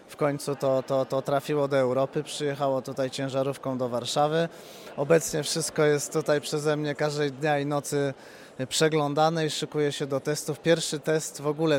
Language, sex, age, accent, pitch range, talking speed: Polish, male, 30-49, native, 135-155 Hz, 170 wpm